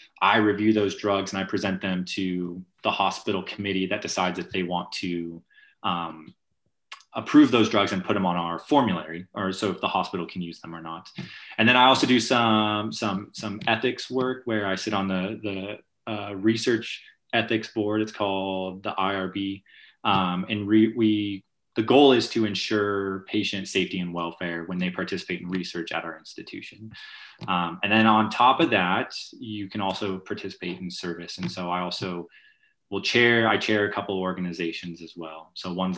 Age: 20-39